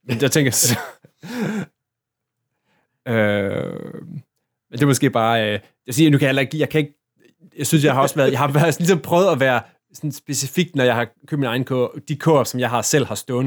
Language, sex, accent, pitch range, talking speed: Danish, male, native, 120-145 Hz, 225 wpm